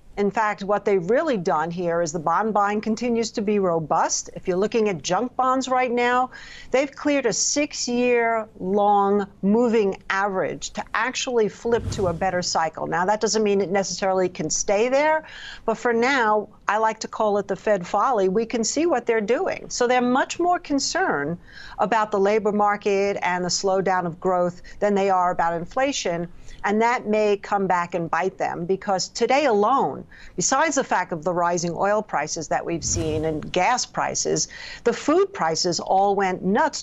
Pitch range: 185-230 Hz